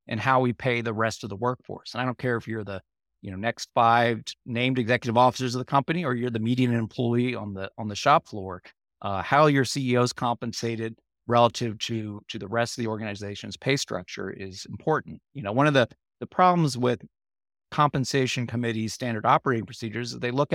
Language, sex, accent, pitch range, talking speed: English, male, American, 110-135 Hz, 205 wpm